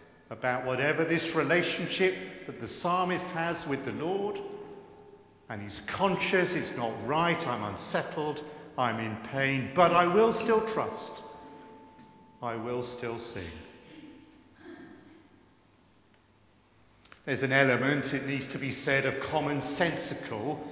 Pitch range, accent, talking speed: 130-180 Hz, British, 120 wpm